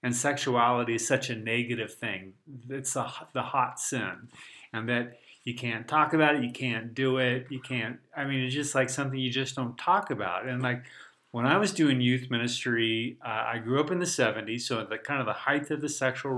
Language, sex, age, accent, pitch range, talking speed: English, male, 40-59, American, 115-135 Hz, 220 wpm